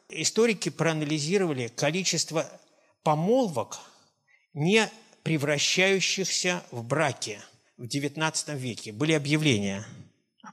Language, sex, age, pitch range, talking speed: Russian, male, 50-69, 130-170 Hz, 80 wpm